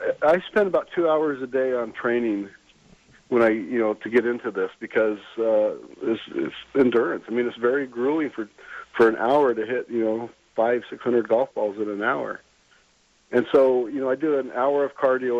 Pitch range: 110-130 Hz